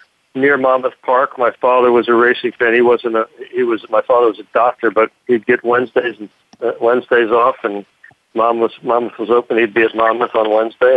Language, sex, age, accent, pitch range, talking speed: English, male, 50-69, American, 115-130 Hz, 210 wpm